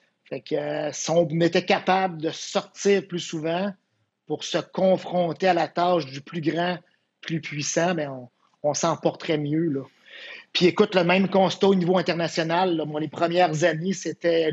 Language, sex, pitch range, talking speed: French, male, 160-185 Hz, 175 wpm